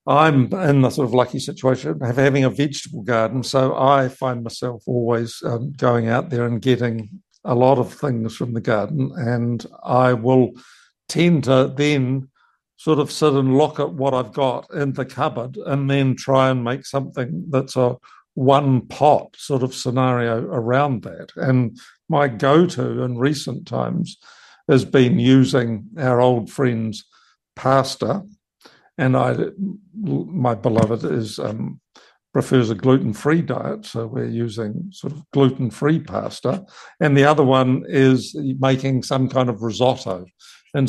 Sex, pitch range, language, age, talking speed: male, 125-145 Hz, English, 60-79, 150 wpm